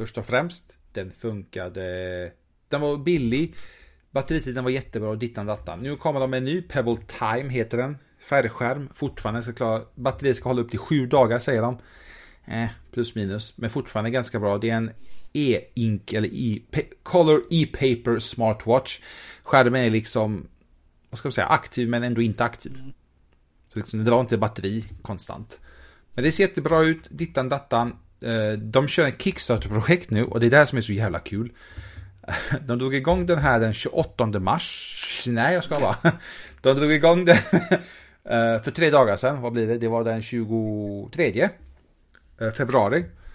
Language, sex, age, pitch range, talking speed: English, male, 30-49, 105-135 Hz, 165 wpm